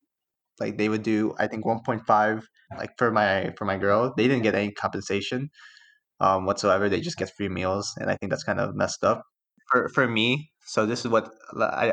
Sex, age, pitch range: male, 20-39, 105-125 Hz